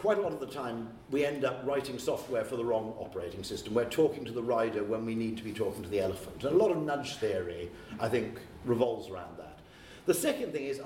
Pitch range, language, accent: 110-145 Hz, English, British